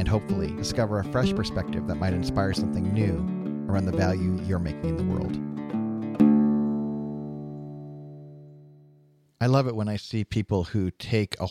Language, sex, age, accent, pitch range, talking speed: English, male, 40-59, American, 95-115 Hz, 150 wpm